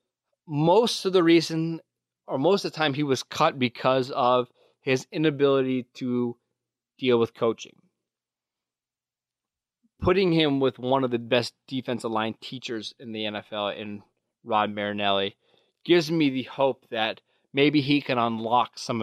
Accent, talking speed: American, 145 wpm